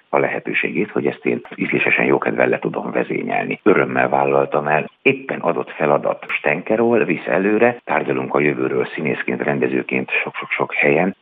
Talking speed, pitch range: 140 wpm, 70-90 Hz